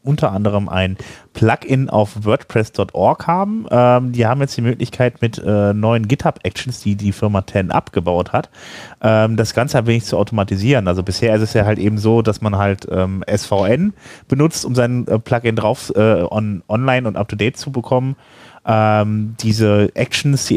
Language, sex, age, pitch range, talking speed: German, male, 30-49, 95-115 Hz, 175 wpm